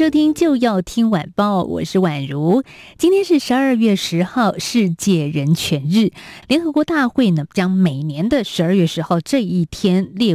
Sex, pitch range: female, 170-220 Hz